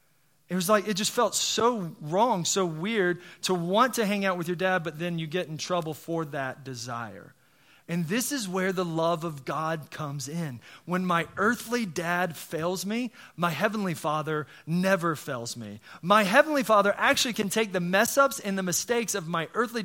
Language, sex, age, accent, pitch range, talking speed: English, male, 30-49, American, 165-215 Hz, 195 wpm